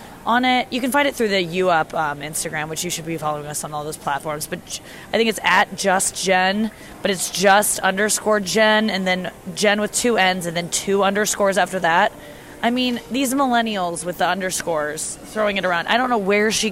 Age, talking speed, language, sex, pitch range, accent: 20-39, 215 wpm, English, female, 170-215 Hz, American